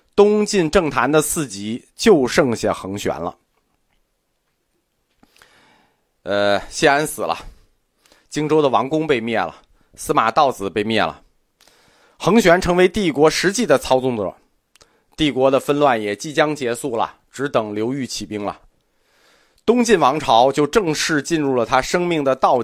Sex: male